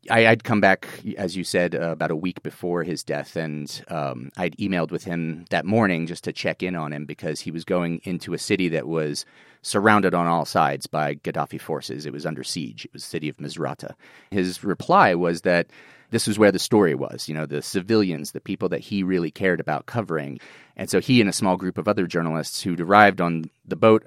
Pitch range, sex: 80-100 Hz, male